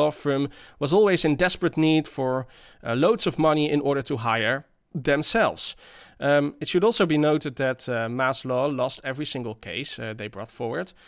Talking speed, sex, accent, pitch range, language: 190 wpm, male, Dutch, 115-145 Hz, English